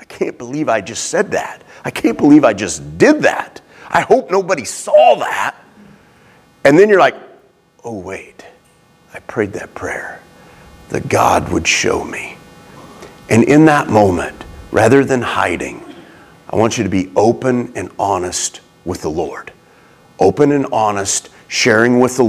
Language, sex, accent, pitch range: English, male, American, 100-130 Hz